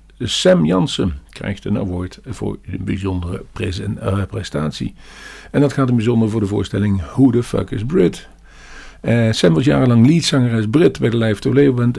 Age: 50-69